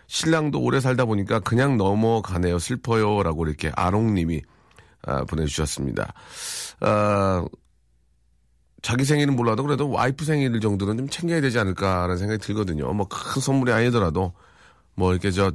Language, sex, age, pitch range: Korean, male, 40-59, 95-145 Hz